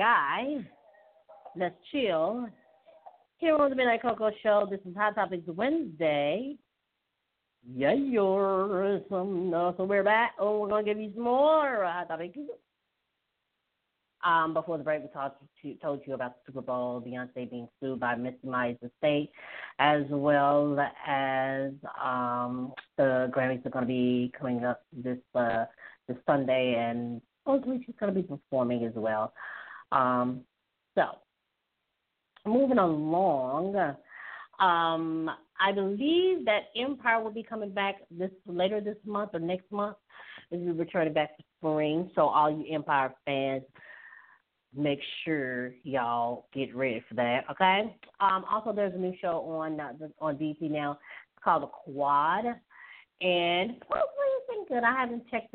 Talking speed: 145 wpm